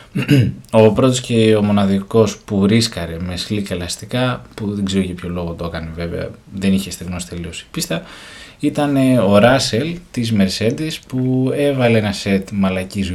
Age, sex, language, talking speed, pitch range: 20-39, male, Greek, 155 wpm, 95-125 Hz